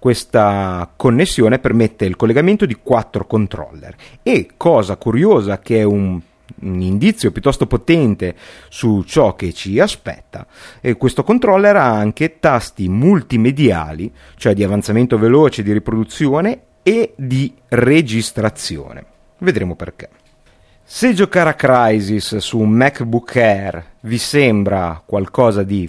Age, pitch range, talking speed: 30-49, 95-140 Hz, 125 wpm